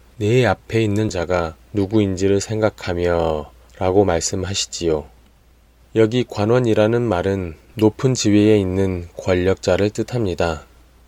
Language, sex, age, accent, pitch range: Korean, male, 20-39, native, 75-105 Hz